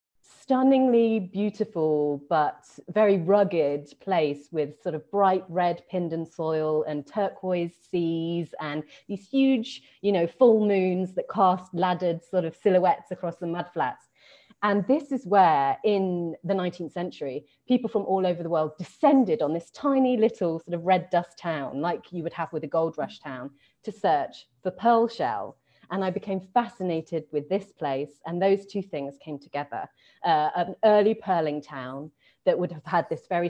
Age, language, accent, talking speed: 30-49, English, British, 170 wpm